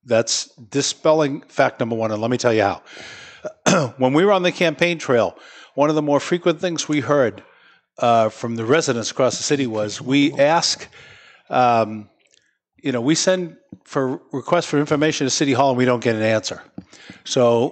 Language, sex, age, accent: English, male, 50-69, American